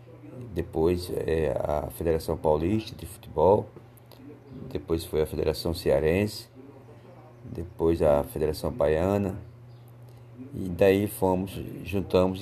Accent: Brazilian